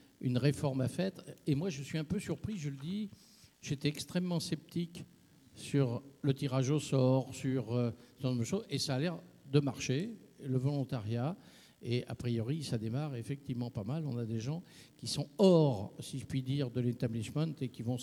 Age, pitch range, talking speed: 50-69, 120-145 Hz, 185 wpm